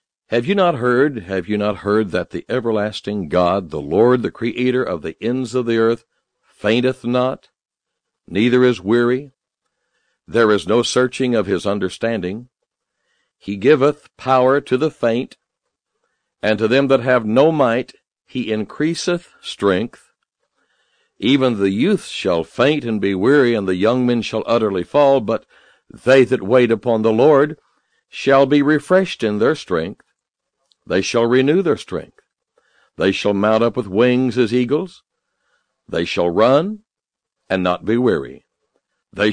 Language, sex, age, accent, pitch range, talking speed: English, male, 60-79, American, 105-130 Hz, 150 wpm